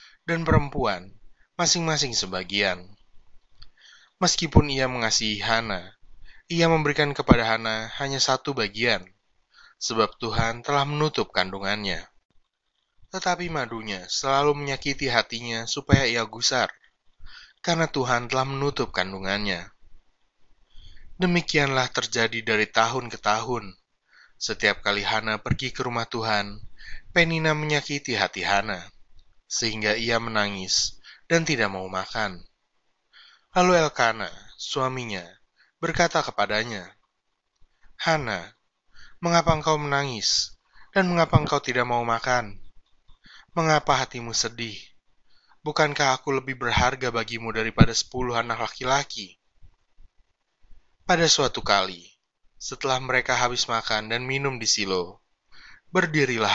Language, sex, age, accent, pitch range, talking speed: Indonesian, male, 20-39, native, 100-140 Hz, 100 wpm